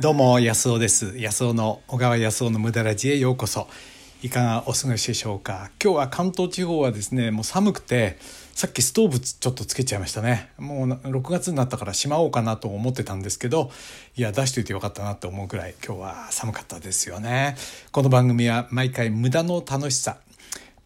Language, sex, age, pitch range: Japanese, male, 60-79, 110-150 Hz